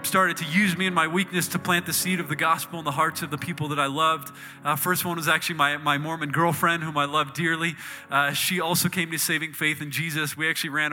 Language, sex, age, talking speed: English, male, 20-39, 265 wpm